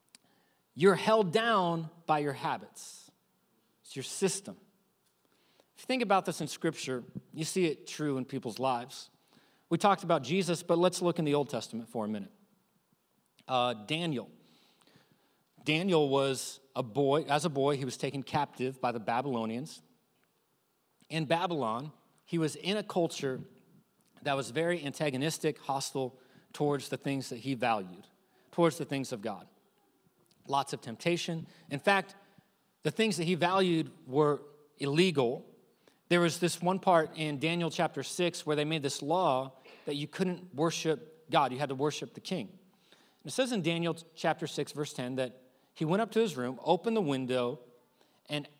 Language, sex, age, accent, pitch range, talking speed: English, male, 40-59, American, 135-180 Hz, 165 wpm